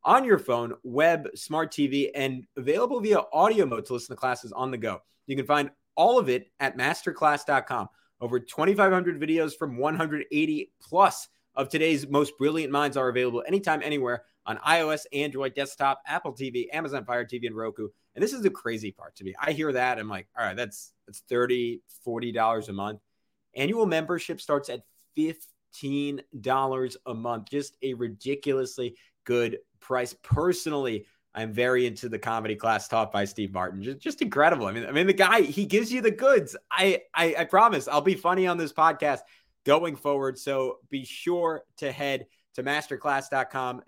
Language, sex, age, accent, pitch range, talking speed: English, male, 30-49, American, 120-160 Hz, 175 wpm